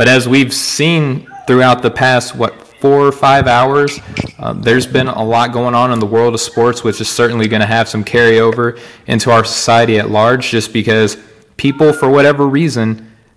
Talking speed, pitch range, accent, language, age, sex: 195 wpm, 115-130 Hz, American, English, 20-39, male